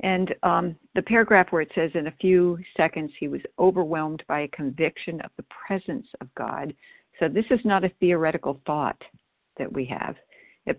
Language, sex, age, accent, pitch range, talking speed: English, female, 60-79, American, 155-190 Hz, 185 wpm